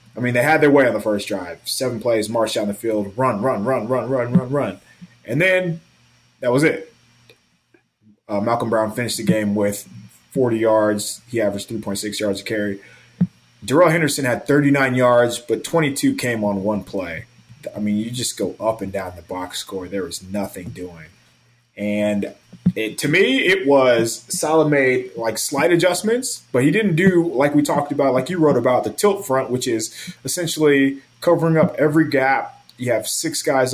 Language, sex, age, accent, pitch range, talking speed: English, male, 20-39, American, 110-150 Hz, 185 wpm